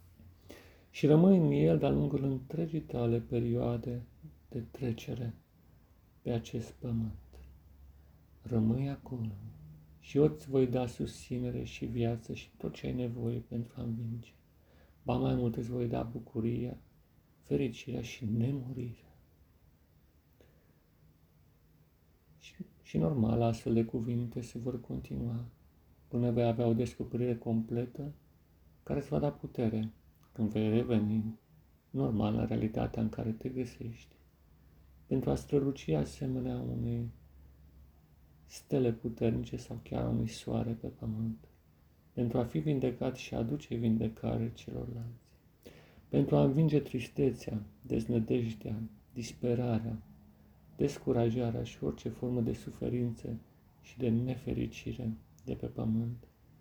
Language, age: Romanian, 40-59